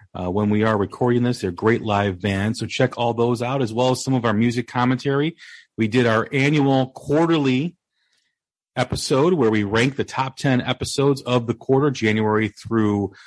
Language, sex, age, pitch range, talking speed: English, male, 40-59, 115-140 Hz, 185 wpm